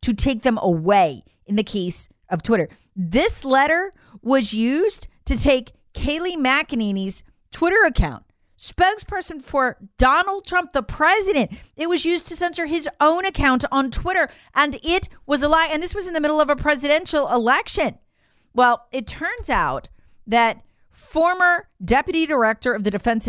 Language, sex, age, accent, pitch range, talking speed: English, female, 40-59, American, 205-325 Hz, 155 wpm